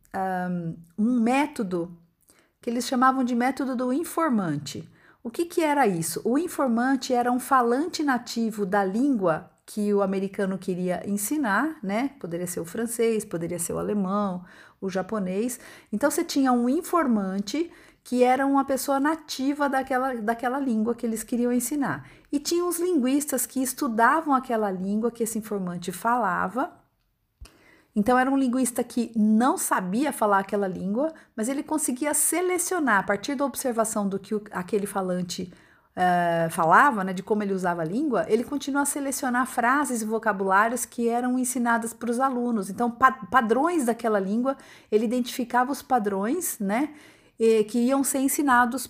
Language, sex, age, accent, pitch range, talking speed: English, female, 50-69, Brazilian, 205-275 Hz, 150 wpm